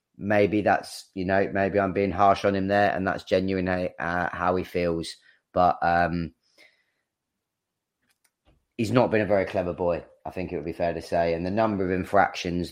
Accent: British